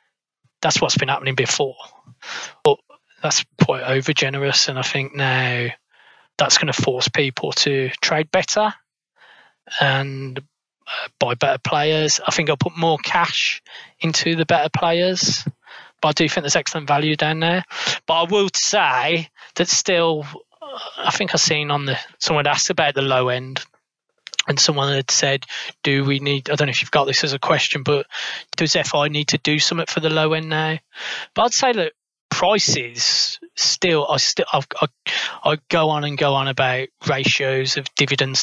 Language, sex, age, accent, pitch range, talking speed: English, male, 20-39, British, 140-165 Hz, 175 wpm